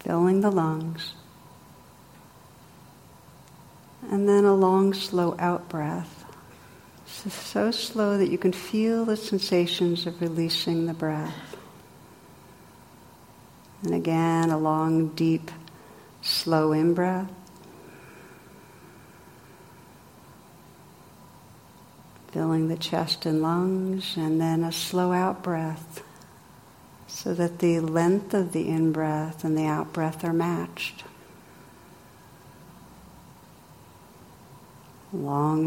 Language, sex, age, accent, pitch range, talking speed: English, female, 60-79, American, 160-185 Hz, 85 wpm